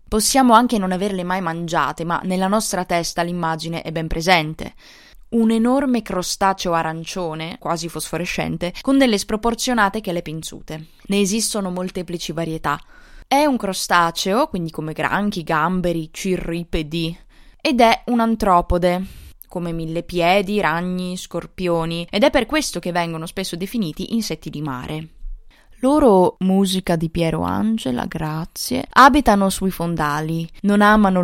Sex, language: female, Italian